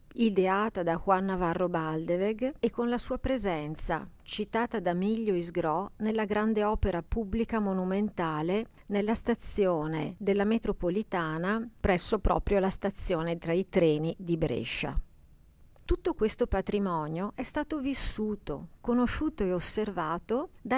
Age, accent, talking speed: 50-69, native, 120 wpm